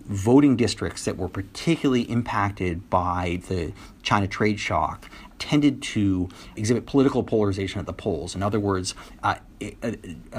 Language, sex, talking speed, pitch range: English, male, 140 wpm, 95-115 Hz